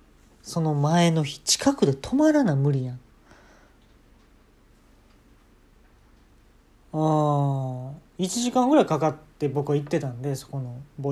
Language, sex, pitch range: Japanese, male, 130-180 Hz